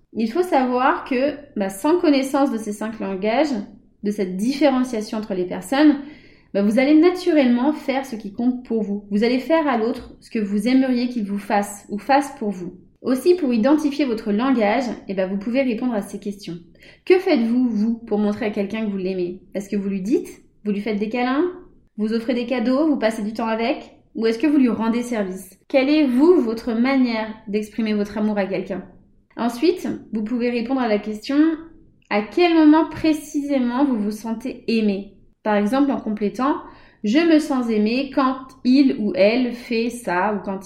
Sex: female